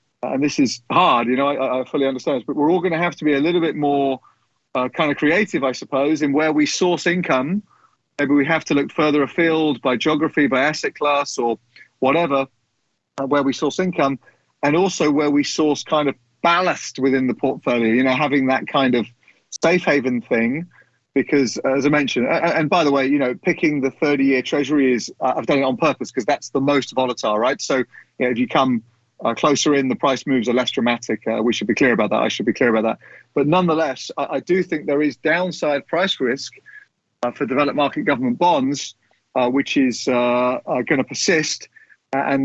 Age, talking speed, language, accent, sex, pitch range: 30-49, 220 wpm, English, British, male, 130-160 Hz